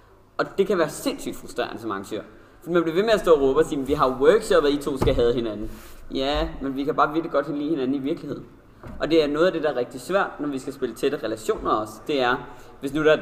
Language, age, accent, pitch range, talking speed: Danish, 20-39, native, 135-165 Hz, 280 wpm